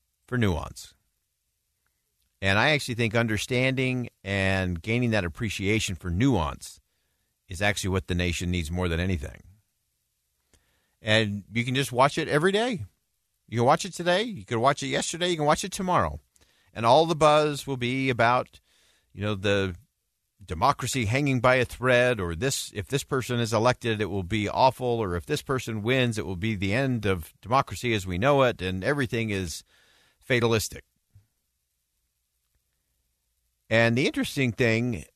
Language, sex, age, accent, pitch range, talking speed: English, male, 50-69, American, 90-125 Hz, 160 wpm